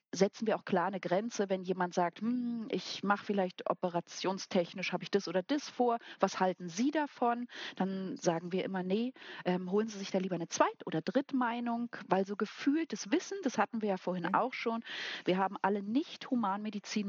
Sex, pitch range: female, 185-235 Hz